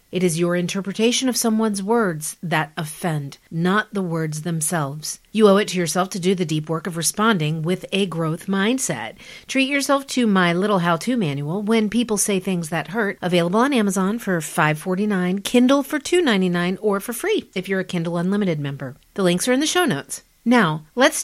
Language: English